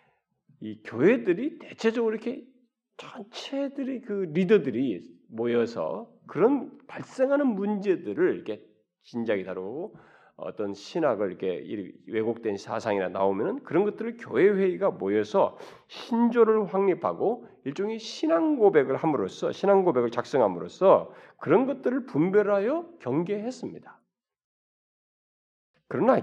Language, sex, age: Korean, male, 40-59